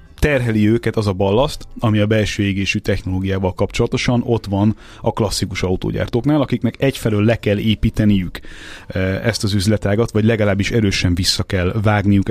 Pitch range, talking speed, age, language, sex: 100-120 Hz, 145 wpm, 30-49, Hungarian, male